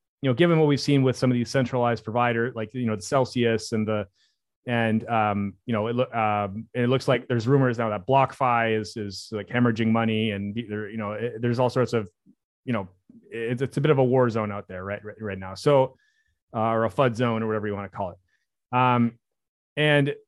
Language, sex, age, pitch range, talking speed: English, male, 30-49, 115-135 Hz, 235 wpm